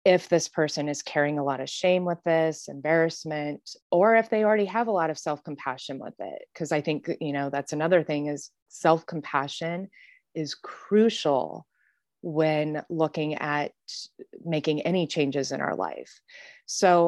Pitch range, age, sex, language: 150-180 Hz, 20-39, female, English